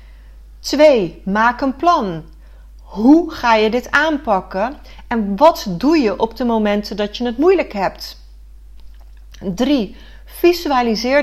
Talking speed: 125 wpm